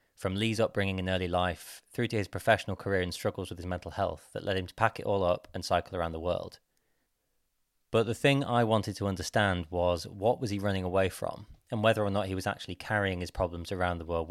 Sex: male